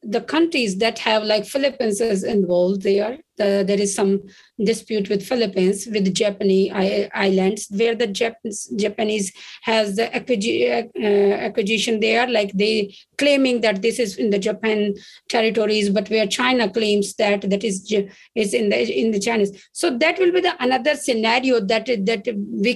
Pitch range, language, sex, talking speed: 215-260 Hz, English, female, 165 wpm